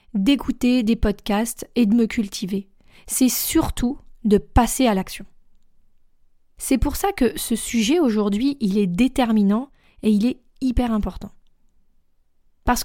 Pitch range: 210-265 Hz